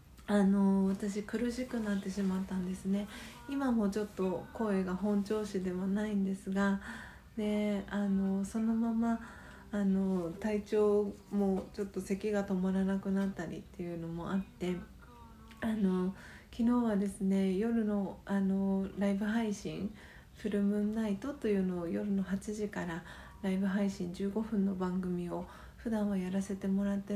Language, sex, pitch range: Japanese, female, 190-210 Hz